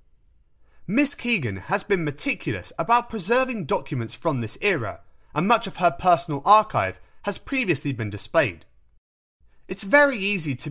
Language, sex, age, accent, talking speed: English, male, 30-49, British, 140 wpm